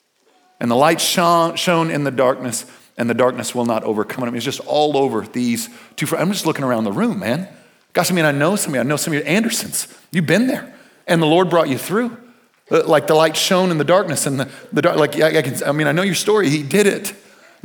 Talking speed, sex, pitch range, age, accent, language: 260 wpm, male, 140-210 Hz, 40-59, American, English